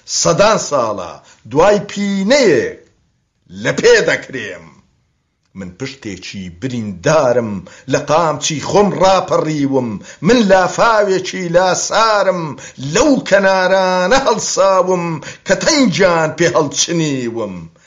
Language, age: Persian, 50-69